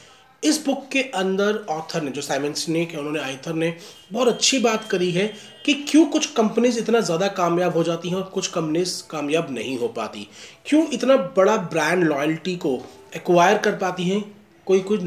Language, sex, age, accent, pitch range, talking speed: Hindi, male, 30-49, native, 160-220 Hz, 185 wpm